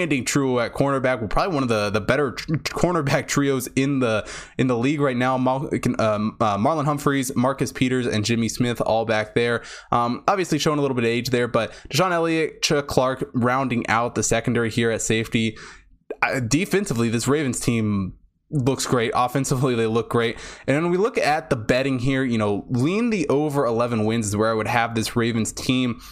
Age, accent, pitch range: 20-39, American, 110-145 Hz